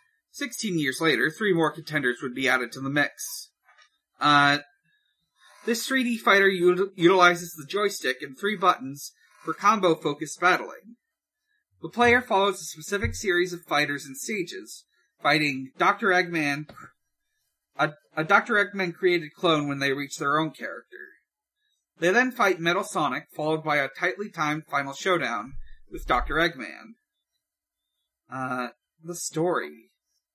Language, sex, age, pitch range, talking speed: English, male, 40-59, 150-230 Hz, 130 wpm